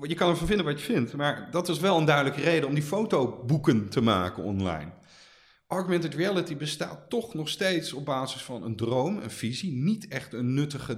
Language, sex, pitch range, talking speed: Dutch, male, 120-160 Hz, 200 wpm